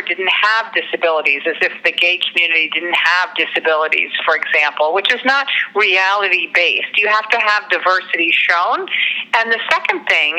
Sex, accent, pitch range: female, American, 165-225 Hz